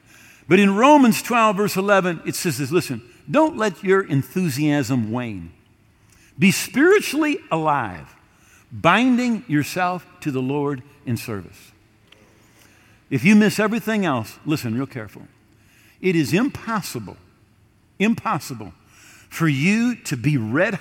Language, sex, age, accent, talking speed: English, male, 50-69, American, 120 wpm